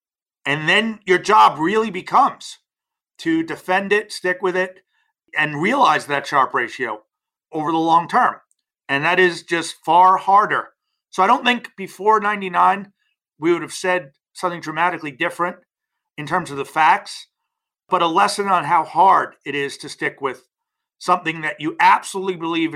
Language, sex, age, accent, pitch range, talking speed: English, male, 40-59, American, 150-210 Hz, 160 wpm